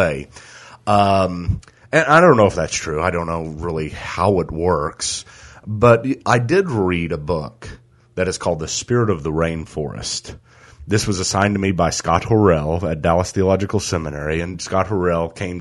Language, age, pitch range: English, 30-49, 85-105 Hz